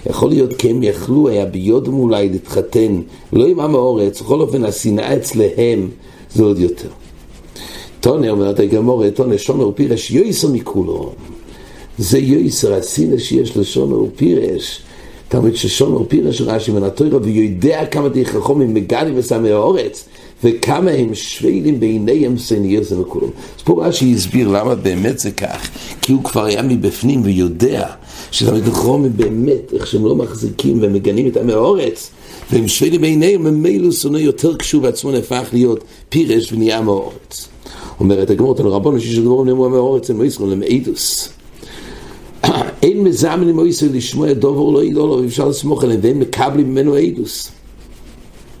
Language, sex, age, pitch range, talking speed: English, male, 60-79, 105-140 Hz, 85 wpm